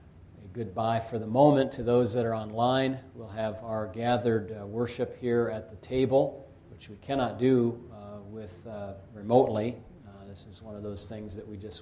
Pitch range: 100-120 Hz